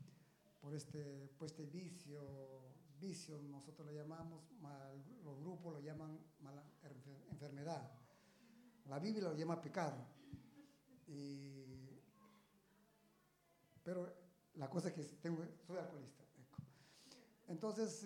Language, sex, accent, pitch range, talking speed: Italian, male, Mexican, 145-180 Hz, 100 wpm